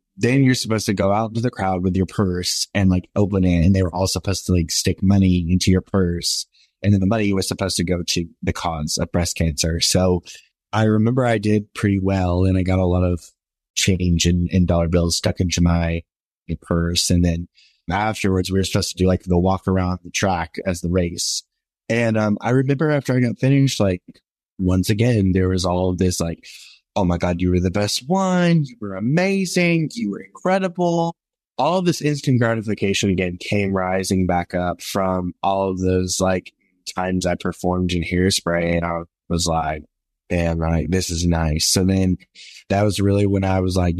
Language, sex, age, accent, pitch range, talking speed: English, male, 20-39, American, 90-105 Hz, 205 wpm